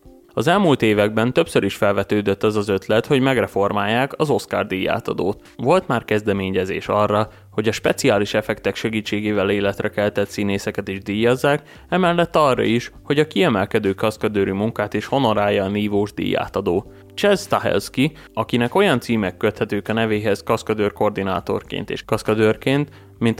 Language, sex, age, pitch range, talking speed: Hungarian, male, 20-39, 100-125 Hz, 140 wpm